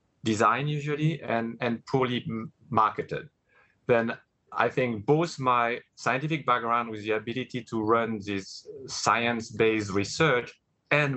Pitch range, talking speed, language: 110-130 Hz, 125 wpm, English